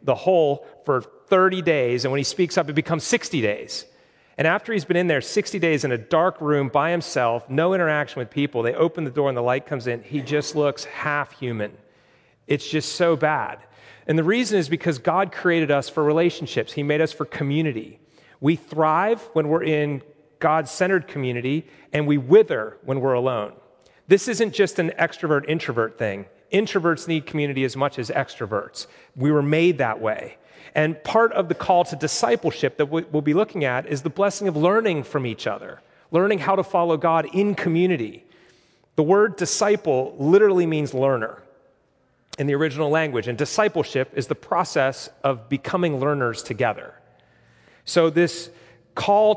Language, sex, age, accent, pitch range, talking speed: English, male, 40-59, American, 140-175 Hz, 175 wpm